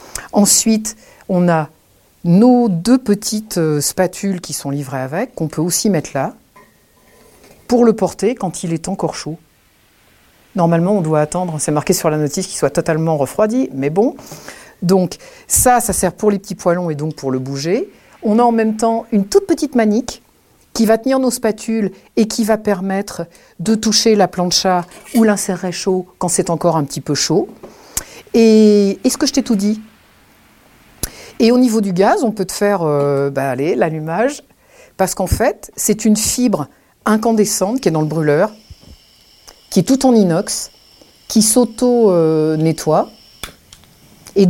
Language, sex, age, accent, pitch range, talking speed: French, female, 50-69, French, 165-225 Hz, 170 wpm